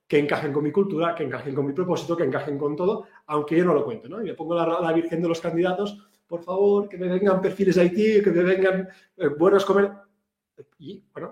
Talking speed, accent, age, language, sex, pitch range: 240 wpm, Spanish, 30-49, Spanish, male, 140-195 Hz